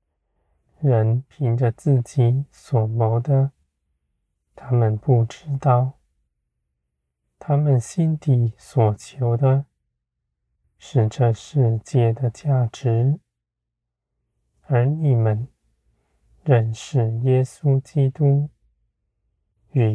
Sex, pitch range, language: male, 95-135 Hz, Chinese